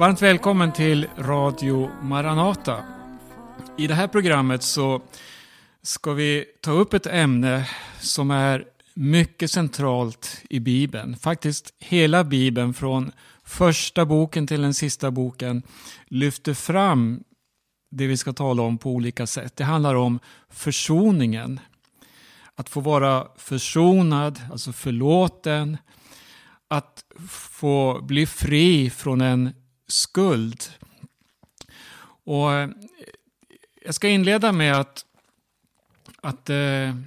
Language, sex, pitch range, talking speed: Swedish, male, 130-165 Hz, 105 wpm